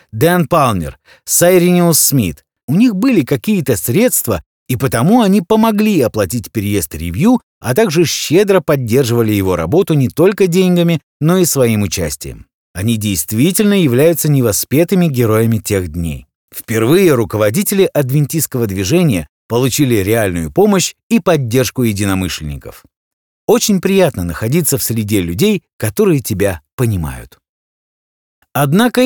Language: Russian